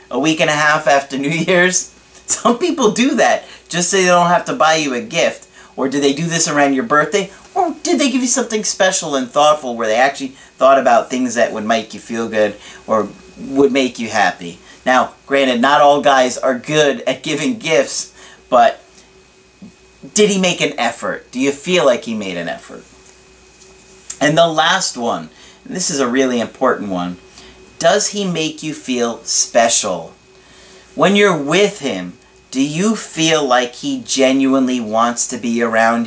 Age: 40-59